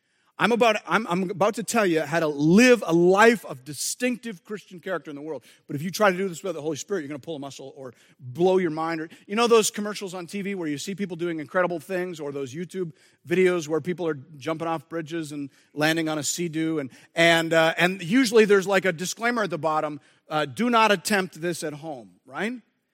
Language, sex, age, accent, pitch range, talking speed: English, male, 40-59, American, 155-205 Hz, 240 wpm